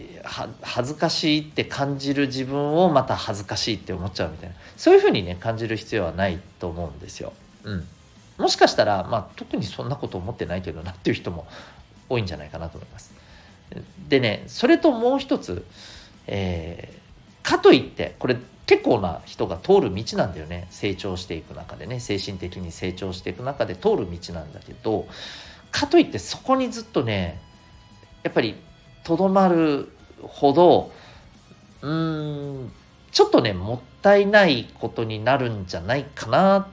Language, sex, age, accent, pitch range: Japanese, male, 50-69, native, 90-145 Hz